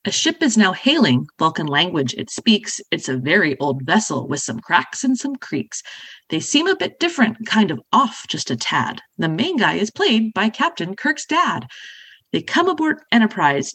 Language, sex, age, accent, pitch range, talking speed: English, female, 30-49, American, 175-265 Hz, 190 wpm